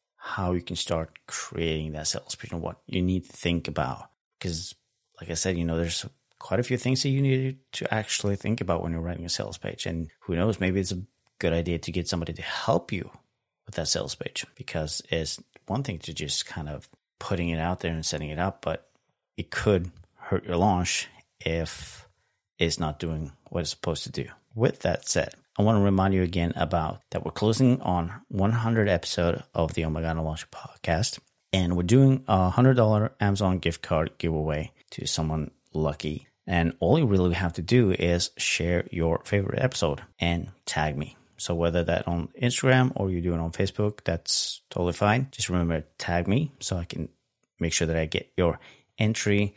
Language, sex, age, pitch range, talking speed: English, male, 30-49, 85-105 Hz, 200 wpm